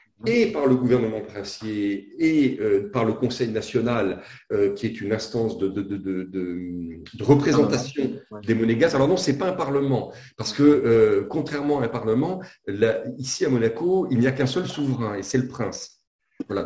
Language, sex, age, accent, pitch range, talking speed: French, male, 50-69, French, 115-150 Hz, 190 wpm